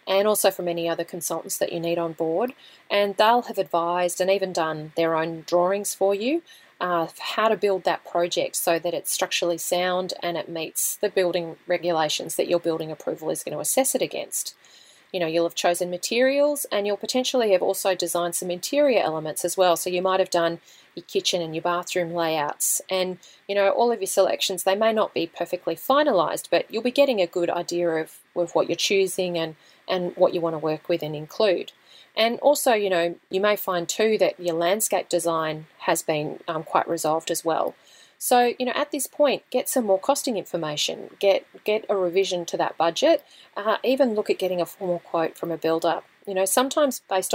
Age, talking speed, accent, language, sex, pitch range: 30-49, 210 wpm, Australian, English, female, 170-205 Hz